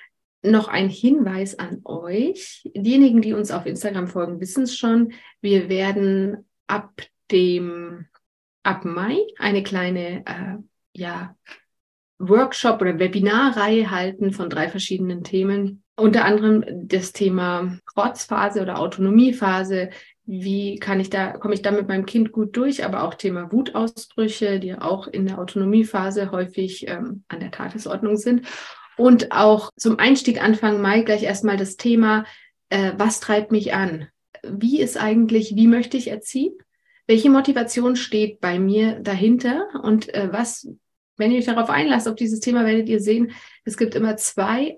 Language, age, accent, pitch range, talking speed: German, 30-49, German, 195-230 Hz, 145 wpm